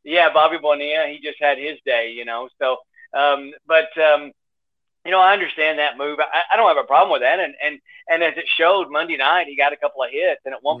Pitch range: 135-155 Hz